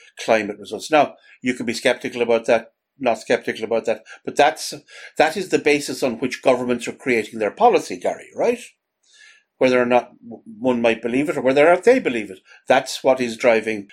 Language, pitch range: English, 115-150 Hz